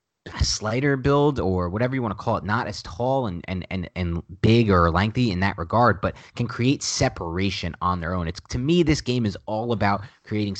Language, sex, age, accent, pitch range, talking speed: English, male, 30-49, American, 90-120 Hz, 220 wpm